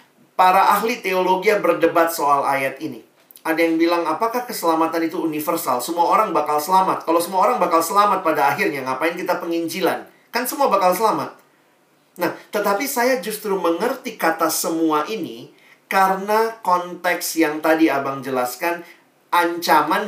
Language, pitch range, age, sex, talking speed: Indonesian, 160-210 Hz, 40-59, male, 140 wpm